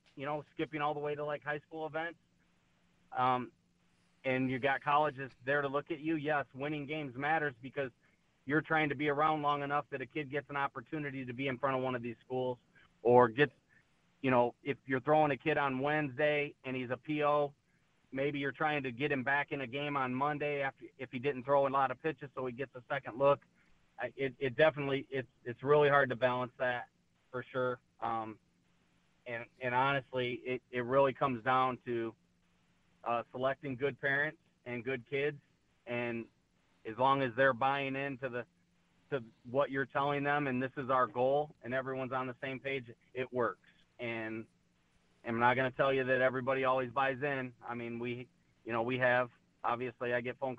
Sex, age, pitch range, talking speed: male, 30-49, 125-145 Hz, 200 wpm